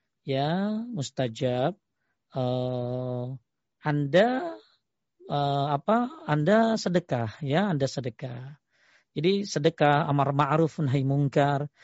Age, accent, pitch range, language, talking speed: 40-59, native, 140-190 Hz, Indonesian, 85 wpm